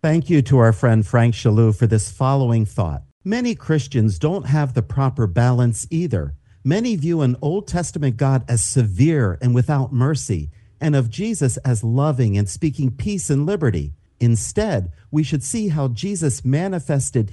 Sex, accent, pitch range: male, American, 110-150 Hz